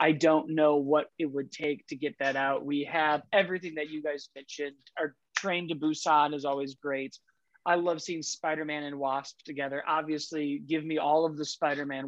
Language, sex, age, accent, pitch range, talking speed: English, male, 20-39, American, 150-190 Hz, 195 wpm